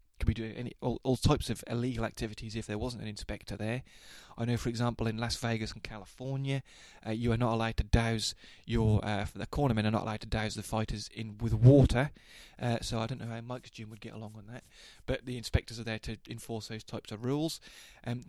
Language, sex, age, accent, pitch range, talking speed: English, male, 20-39, British, 110-125 Hz, 235 wpm